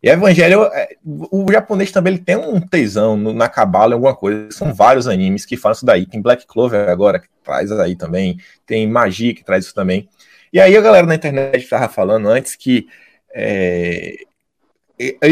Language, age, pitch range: Portuguese, 20-39, 110-165 Hz